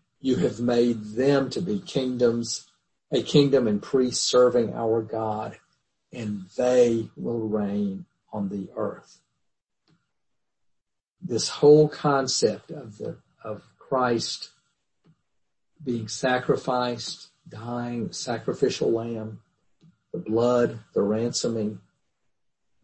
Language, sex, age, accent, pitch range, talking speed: English, male, 50-69, American, 110-130 Hz, 95 wpm